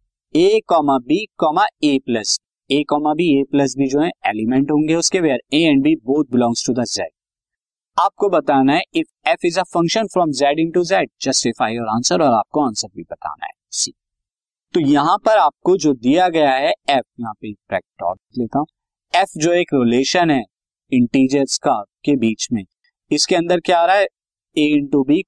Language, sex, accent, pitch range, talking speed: Hindi, male, native, 125-180 Hz, 185 wpm